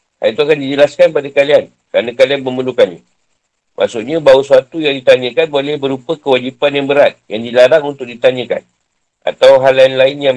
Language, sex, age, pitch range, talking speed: Malay, male, 50-69, 130-155 Hz, 155 wpm